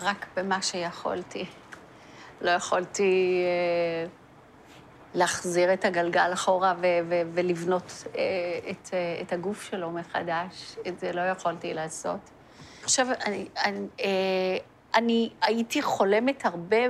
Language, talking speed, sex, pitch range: Hebrew, 115 wpm, female, 175-210 Hz